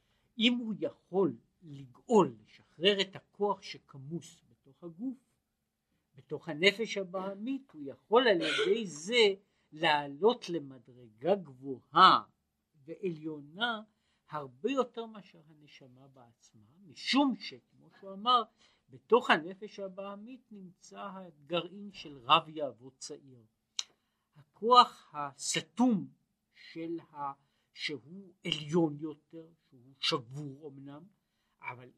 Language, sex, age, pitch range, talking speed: Hebrew, male, 50-69, 135-200 Hz, 95 wpm